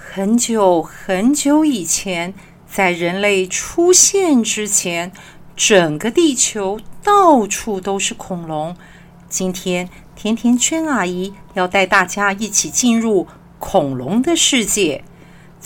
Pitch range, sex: 190-265 Hz, female